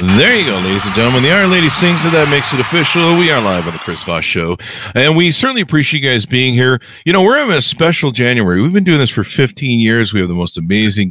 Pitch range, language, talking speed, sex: 90-130 Hz, English, 270 wpm, male